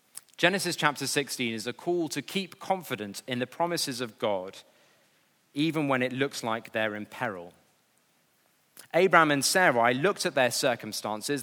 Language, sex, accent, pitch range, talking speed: English, male, British, 110-145 Hz, 150 wpm